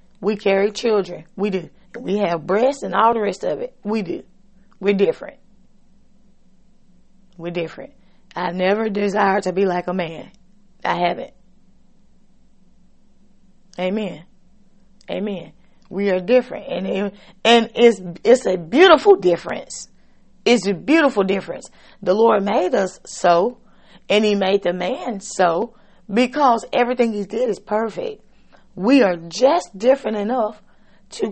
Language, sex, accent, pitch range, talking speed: English, female, American, 190-230 Hz, 135 wpm